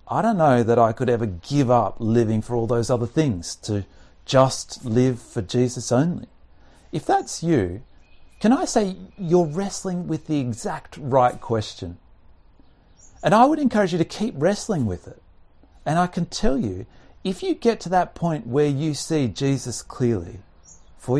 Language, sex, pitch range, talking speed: English, male, 95-140 Hz, 175 wpm